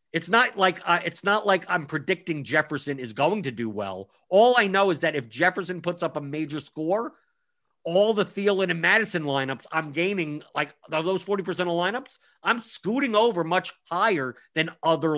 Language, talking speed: English, 175 wpm